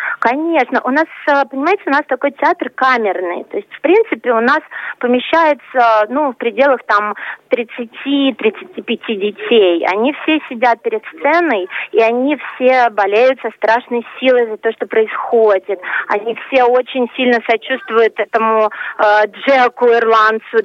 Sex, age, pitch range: female, 30-49, 205-255 Hz